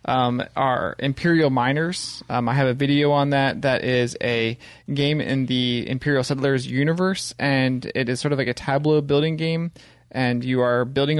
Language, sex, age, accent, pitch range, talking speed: English, male, 20-39, American, 120-140 Hz, 180 wpm